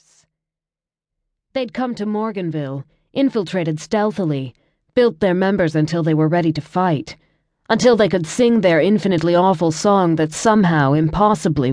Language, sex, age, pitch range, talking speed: English, female, 30-49, 155-200 Hz, 135 wpm